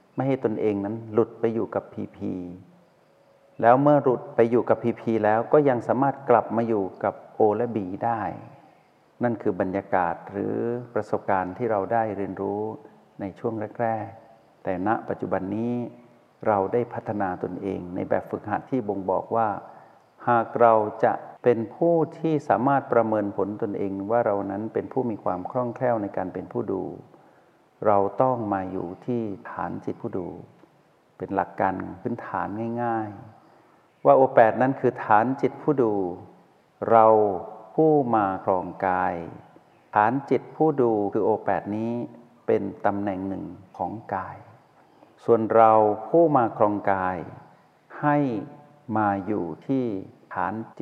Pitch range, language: 100-120 Hz, Thai